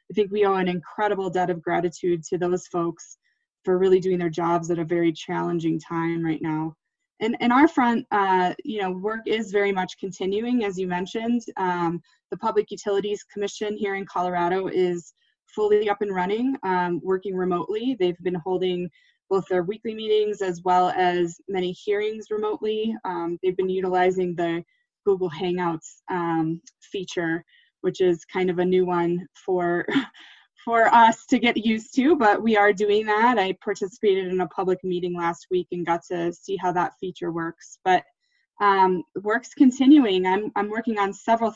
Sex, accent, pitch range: female, American, 180-210 Hz